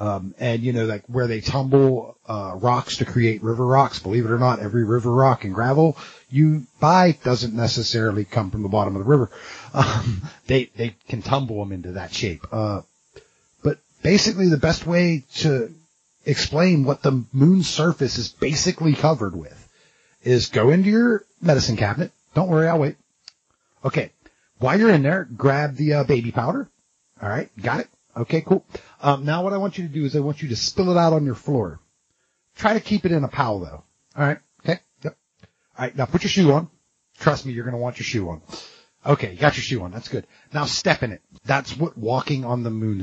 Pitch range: 115-155 Hz